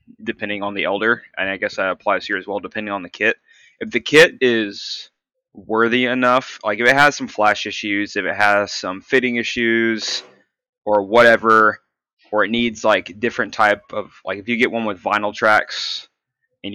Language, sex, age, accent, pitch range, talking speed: English, male, 20-39, American, 100-120 Hz, 190 wpm